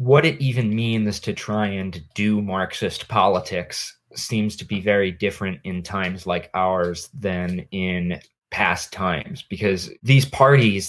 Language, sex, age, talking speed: English, male, 20-39, 145 wpm